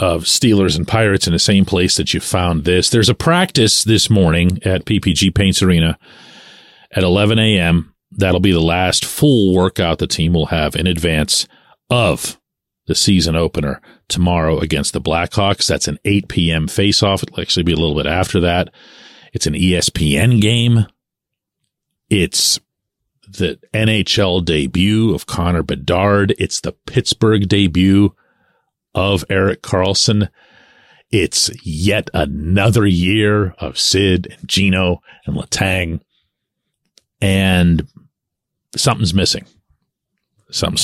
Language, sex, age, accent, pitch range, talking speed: English, male, 40-59, American, 85-105 Hz, 130 wpm